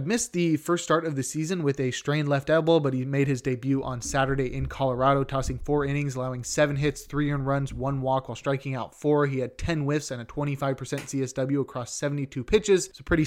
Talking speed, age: 225 wpm, 20-39